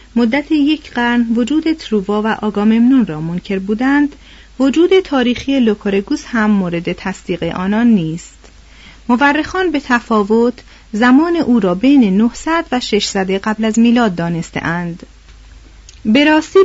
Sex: female